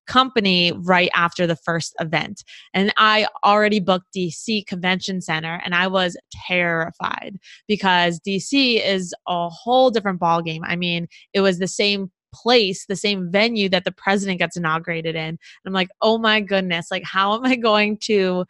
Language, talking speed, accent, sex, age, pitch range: English, 170 wpm, American, female, 20-39, 180-215 Hz